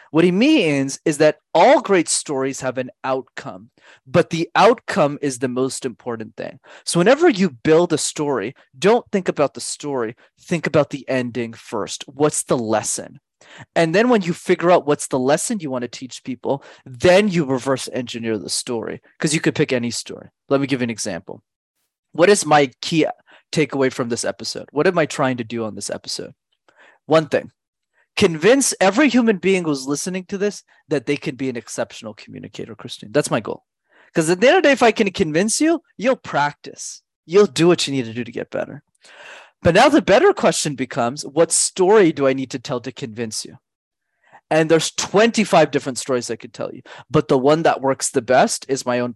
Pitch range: 130-175 Hz